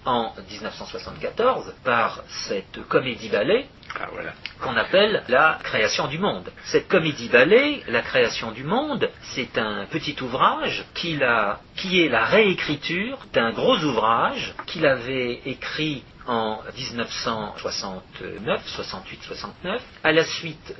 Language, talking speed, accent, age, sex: French, 105 wpm, French, 50-69, male